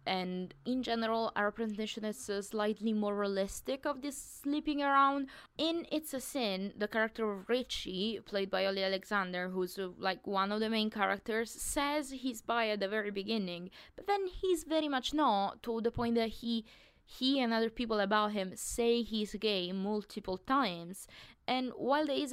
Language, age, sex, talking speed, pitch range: English, 20-39, female, 180 wpm, 185-230 Hz